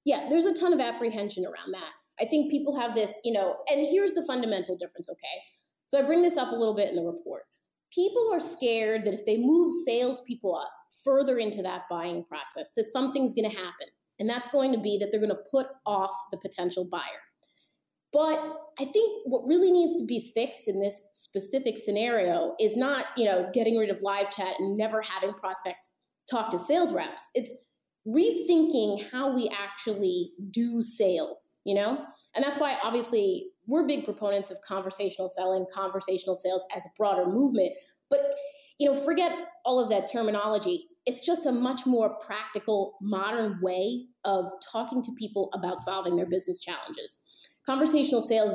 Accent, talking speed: American, 180 wpm